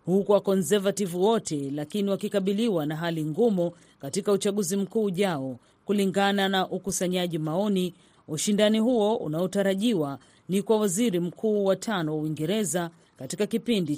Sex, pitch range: female, 160-210 Hz